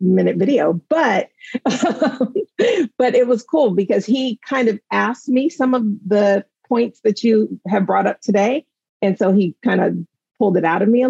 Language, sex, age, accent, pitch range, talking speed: English, female, 40-59, American, 180-235 Hz, 190 wpm